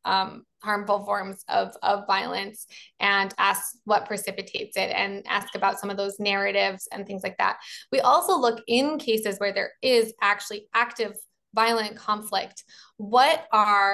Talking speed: 155 wpm